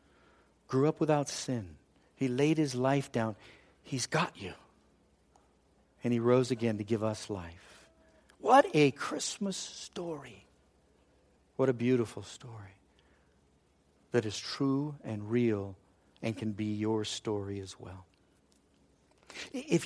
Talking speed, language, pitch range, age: 125 wpm, English, 100-130 Hz, 60-79